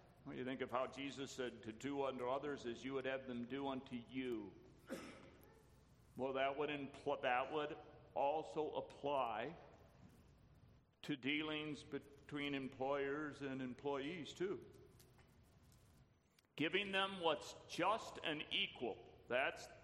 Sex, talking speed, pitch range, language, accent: male, 115 wpm, 120-150 Hz, English, American